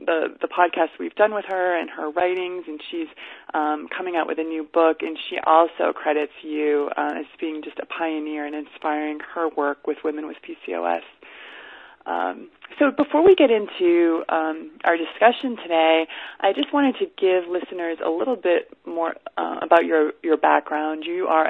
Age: 20-39